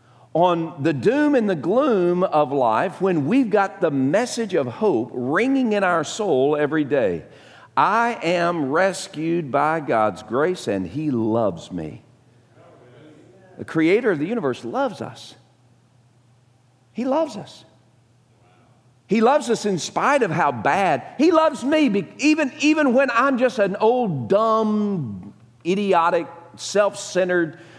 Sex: male